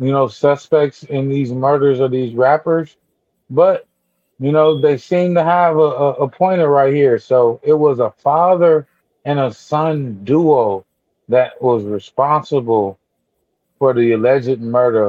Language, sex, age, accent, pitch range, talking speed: English, male, 30-49, American, 125-155 Hz, 150 wpm